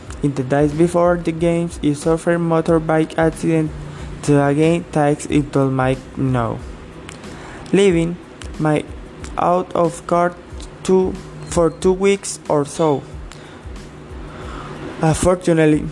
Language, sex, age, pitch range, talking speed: English, male, 20-39, 145-170 Hz, 105 wpm